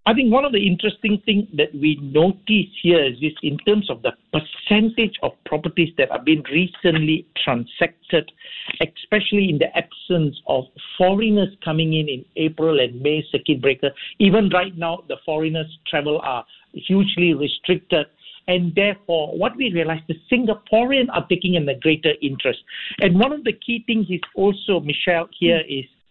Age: 60-79